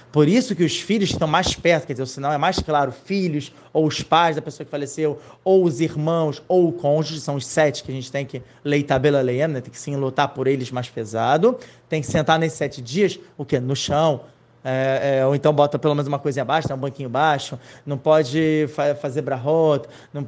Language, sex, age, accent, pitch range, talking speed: Portuguese, male, 20-39, Brazilian, 145-175 Hz, 230 wpm